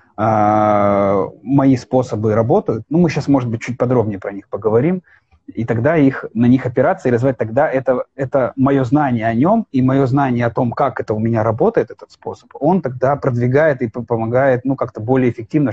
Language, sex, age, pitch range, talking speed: Russian, male, 30-49, 110-135 Hz, 185 wpm